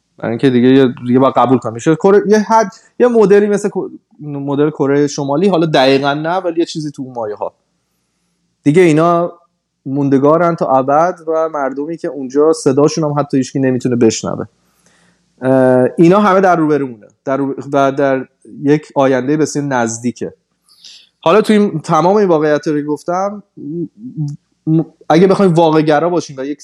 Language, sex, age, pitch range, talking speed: Persian, male, 20-39, 135-170 Hz, 145 wpm